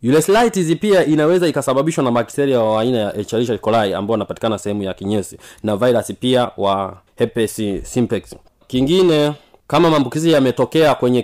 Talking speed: 150 wpm